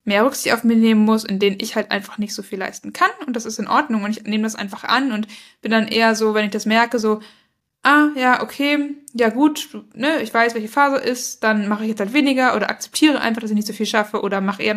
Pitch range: 200-230 Hz